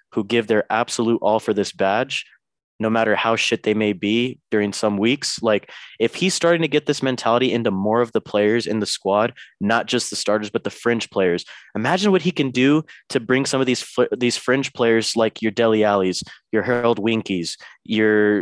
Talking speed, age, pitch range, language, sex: 205 wpm, 20-39, 100-120 Hz, English, male